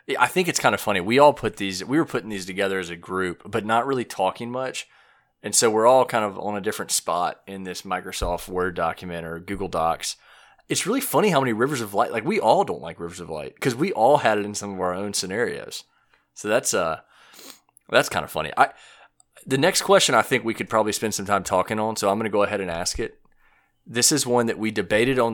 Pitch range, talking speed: 95-120 Hz, 250 wpm